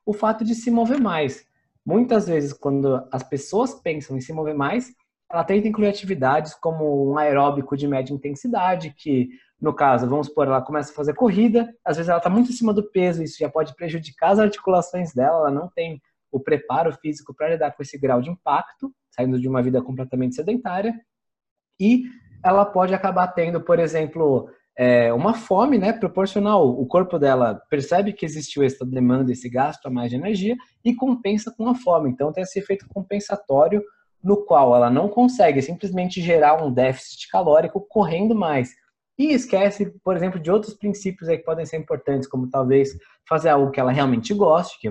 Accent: Brazilian